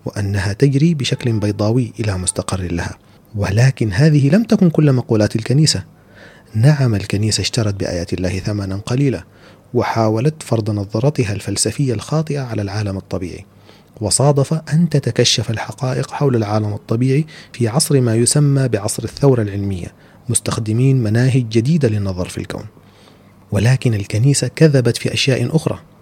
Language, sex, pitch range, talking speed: Arabic, male, 100-135 Hz, 125 wpm